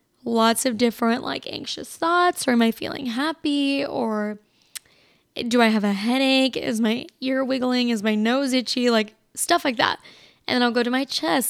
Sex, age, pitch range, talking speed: female, 10-29, 230-275 Hz, 190 wpm